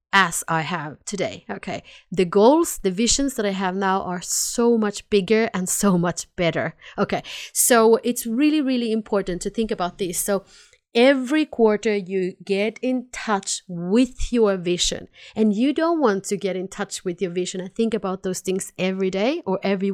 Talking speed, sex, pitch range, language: 185 wpm, female, 190-240 Hz, English